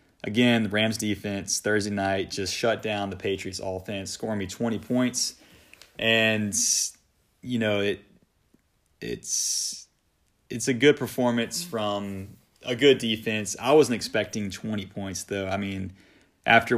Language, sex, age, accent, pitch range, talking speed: English, male, 30-49, American, 100-115 Hz, 135 wpm